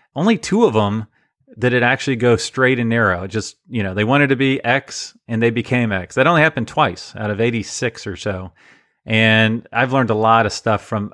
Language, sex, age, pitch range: English, male, 40-59, 105-125 Hz